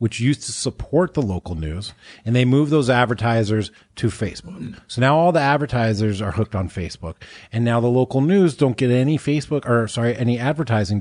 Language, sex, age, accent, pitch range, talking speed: English, male, 30-49, American, 105-130 Hz, 195 wpm